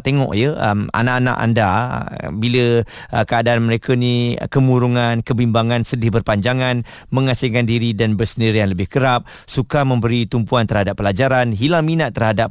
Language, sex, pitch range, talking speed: Malay, male, 105-125 Hz, 135 wpm